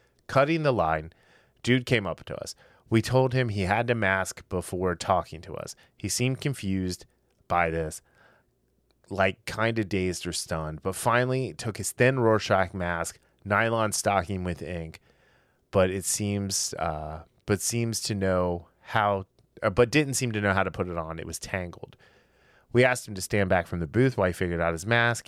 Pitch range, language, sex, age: 90-115 Hz, English, male, 30-49